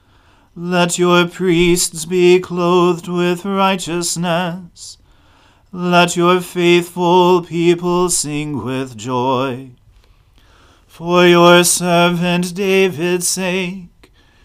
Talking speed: 80 wpm